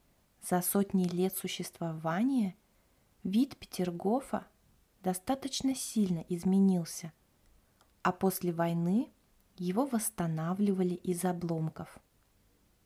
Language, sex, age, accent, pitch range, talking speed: Russian, female, 20-39, native, 170-195 Hz, 75 wpm